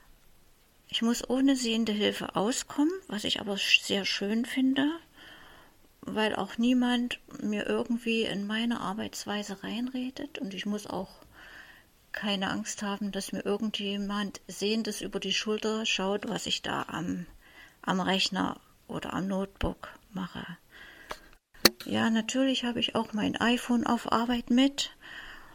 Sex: female